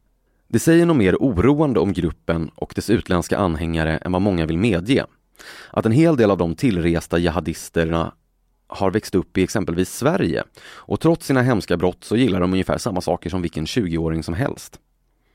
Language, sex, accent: Swedish, male, native